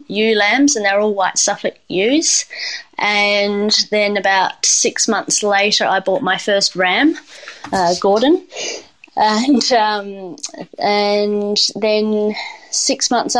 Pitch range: 195-240 Hz